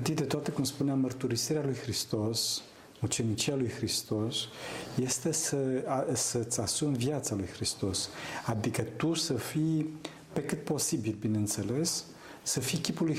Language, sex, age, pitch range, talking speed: Romanian, male, 50-69, 115-150 Hz, 130 wpm